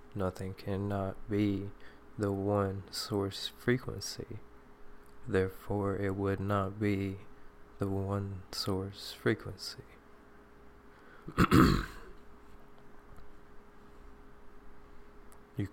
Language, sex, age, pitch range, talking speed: English, male, 20-39, 95-105 Hz, 65 wpm